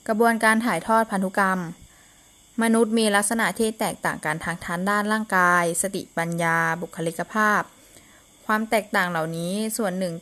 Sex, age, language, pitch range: female, 20-39, Thai, 175-220 Hz